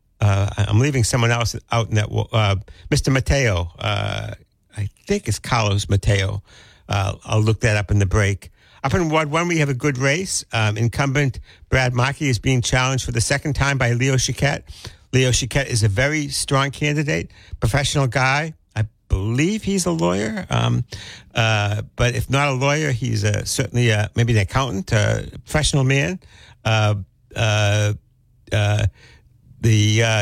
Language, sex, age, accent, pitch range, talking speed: English, male, 60-79, American, 105-130 Hz, 165 wpm